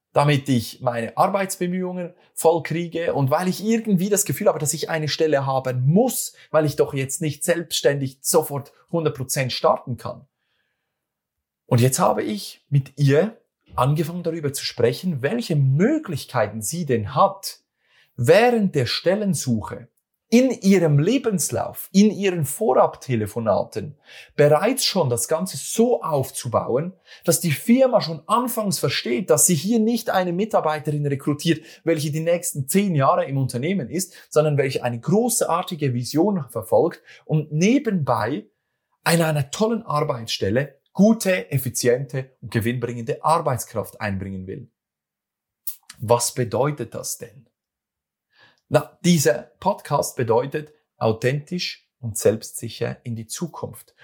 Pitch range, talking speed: 120-175 Hz, 125 wpm